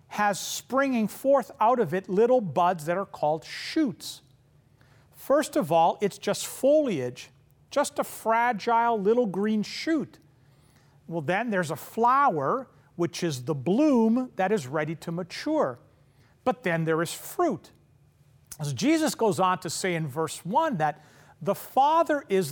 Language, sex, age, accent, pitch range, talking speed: English, male, 50-69, American, 150-245 Hz, 150 wpm